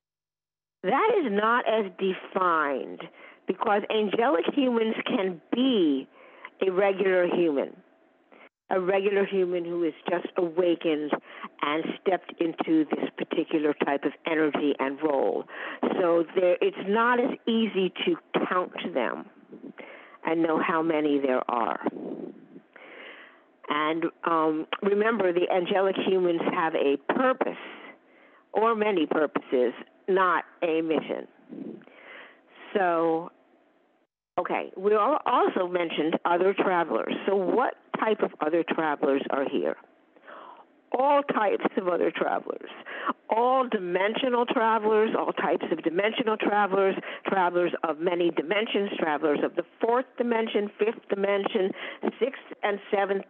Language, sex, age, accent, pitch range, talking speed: English, female, 50-69, American, 170-230 Hz, 115 wpm